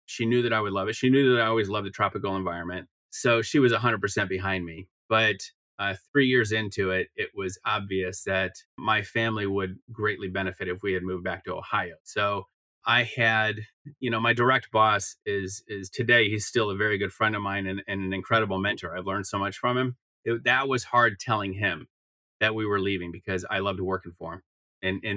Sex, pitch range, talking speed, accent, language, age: male, 95-120 Hz, 225 wpm, American, English, 30-49